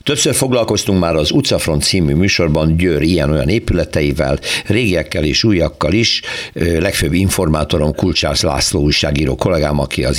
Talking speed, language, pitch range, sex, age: 130 wpm, Hungarian, 80-110 Hz, male, 60-79